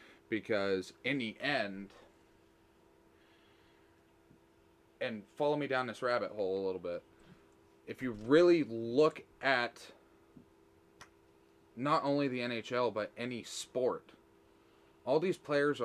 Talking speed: 110 wpm